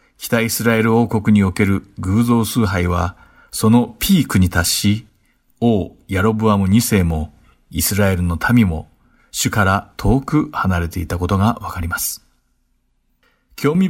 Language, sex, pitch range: Japanese, male, 95-115 Hz